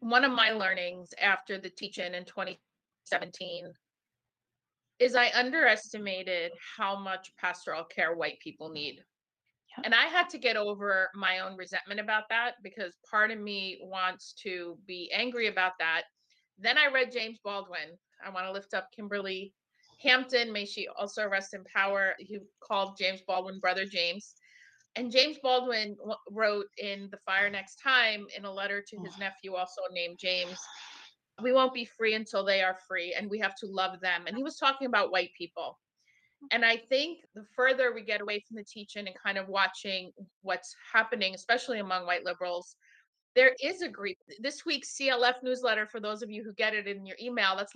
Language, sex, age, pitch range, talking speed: English, female, 30-49, 185-235 Hz, 180 wpm